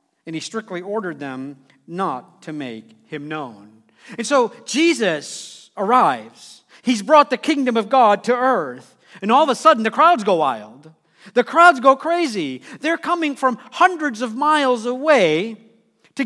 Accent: American